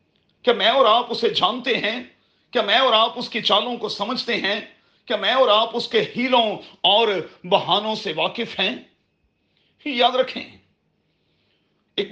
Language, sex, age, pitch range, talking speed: Urdu, male, 40-59, 200-260 Hz, 155 wpm